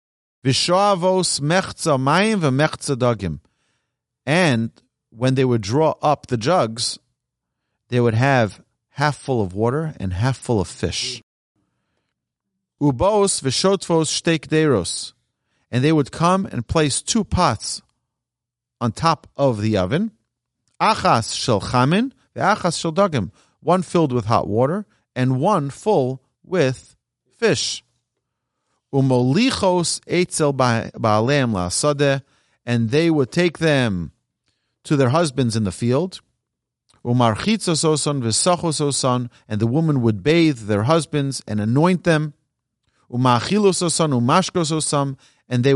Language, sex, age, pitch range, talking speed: English, male, 40-59, 120-165 Hz, 100 wpm